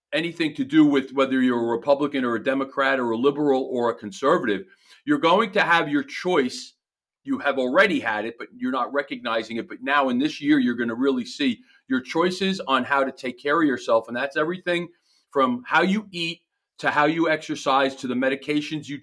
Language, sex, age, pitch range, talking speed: English, male, 40-59, 135-185 Hz, 210 wpm